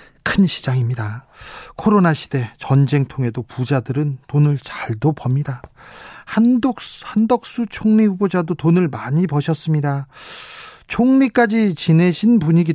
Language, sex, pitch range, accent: Korean, male, 140-180 Hz, native